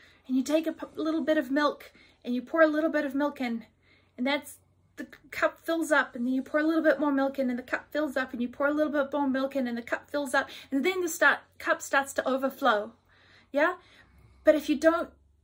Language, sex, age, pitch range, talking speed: English, female, 30-49, 220-290 Hz, 250 wpm